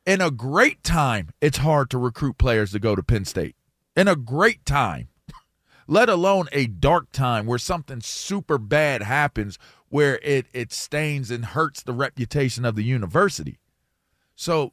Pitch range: 125-180 Hz